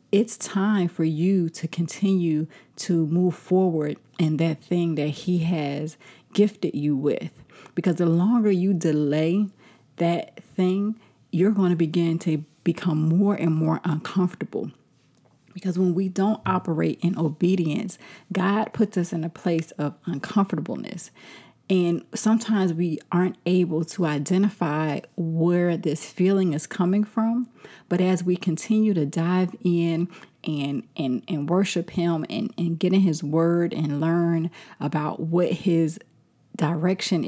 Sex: female